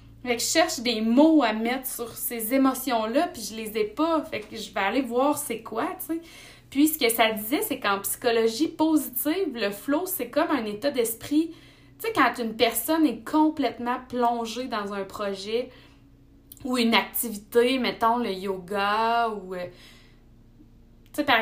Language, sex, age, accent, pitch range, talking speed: French, female, 20-39, Canadian, 215-285 Hz, 170 wpm